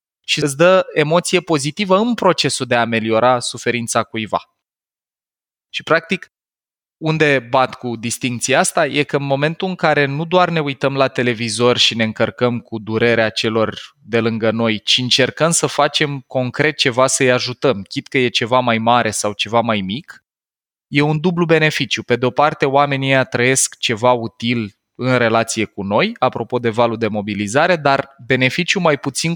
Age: 20-39